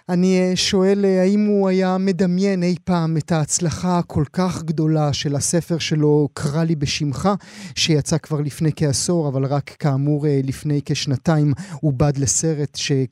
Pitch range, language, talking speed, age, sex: 150-175 Hz, Hebrew, 140 wpm, 30-49, male